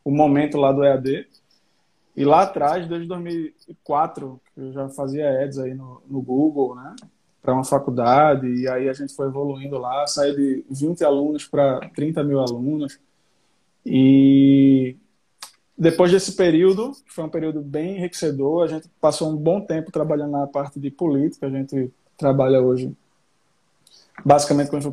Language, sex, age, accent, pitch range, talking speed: Portuguese, male, 20-39, Brazilian, 140-160 Hz, 155 wpm